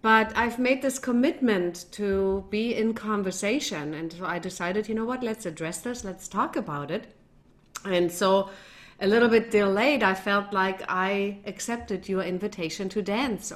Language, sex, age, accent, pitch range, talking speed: English, female, 40-59, German, 180-220 Hz, 170 wpm